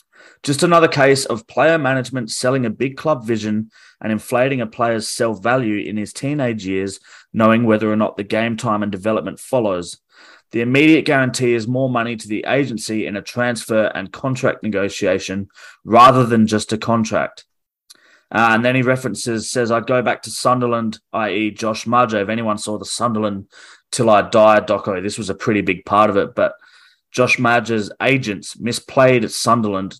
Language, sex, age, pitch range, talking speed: English, male, 20-39, 105-130 Hz, 180 wpm